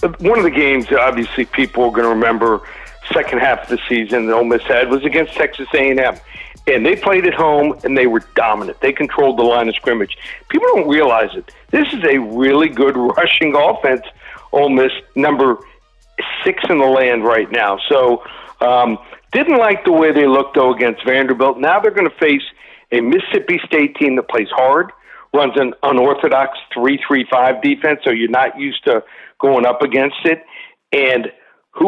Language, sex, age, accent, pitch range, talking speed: English, male, 50-69, American, 130-180 Hz, 185 wpm